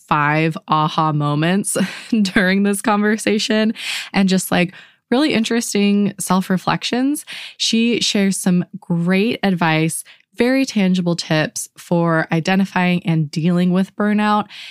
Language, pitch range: English, 160-200 Hz